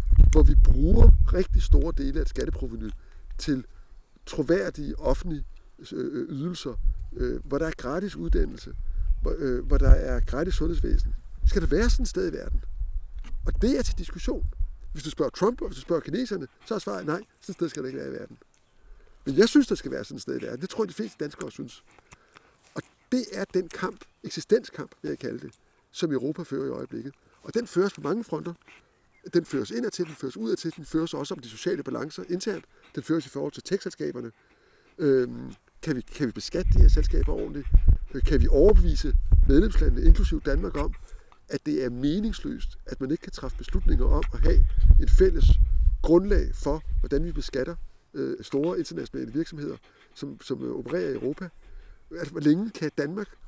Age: 60-79